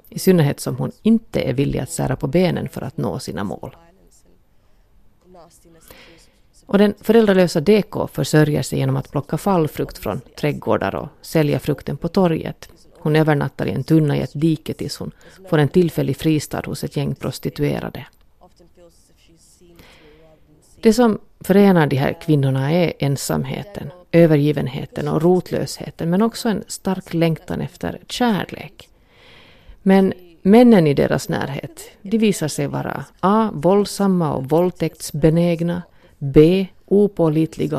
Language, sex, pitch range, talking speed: Finnish, female, 150-185 Hz, 130 wpm